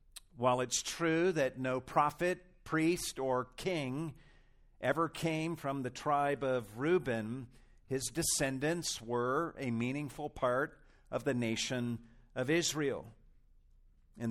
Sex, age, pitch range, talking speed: male, 50-69, 120-150 Hz, 115 wpm